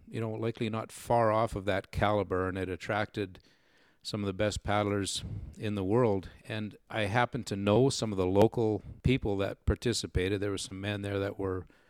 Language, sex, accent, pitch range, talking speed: English, male, American, 95-115 Hz, 195 wpm